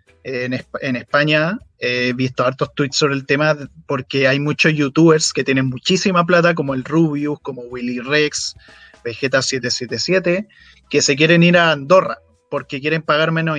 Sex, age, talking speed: male, 20-39, 150 wpm